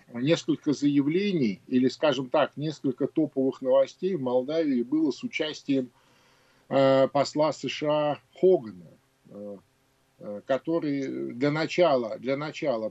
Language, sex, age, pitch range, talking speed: Russian, male, 50-69, 125-160 Hz, 100 wpm